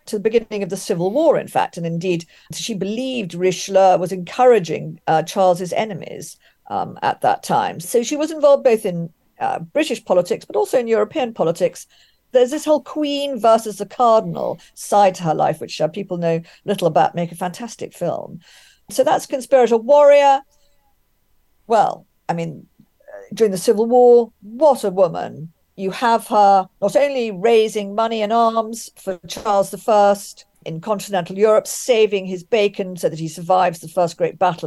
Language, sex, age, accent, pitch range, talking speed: English, female, 50-69, British, 180-225 Hz, 170 wpm